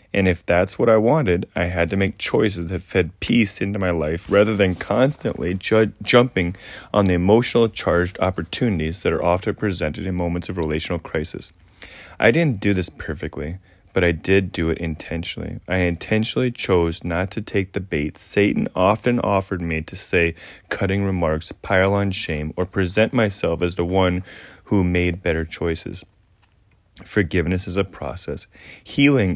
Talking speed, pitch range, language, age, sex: 165 wpm, 85-100 Hz, English, 30-49, male